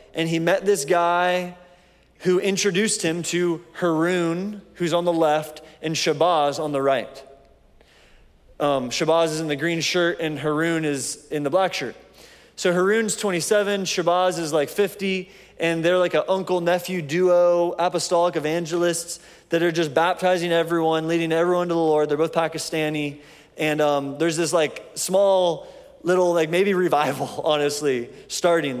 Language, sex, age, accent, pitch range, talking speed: English, male, 30-49, American, 155-180 Hz, 150 wpm